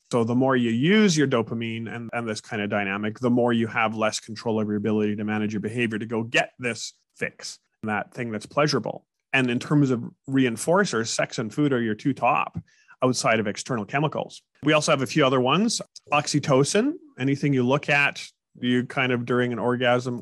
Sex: male